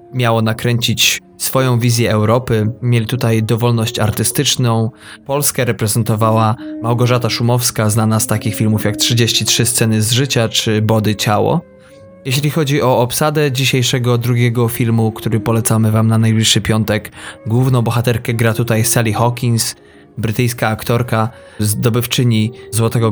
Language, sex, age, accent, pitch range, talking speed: Polish, male, 20-39, native, 110-125 Hz, 125 wpm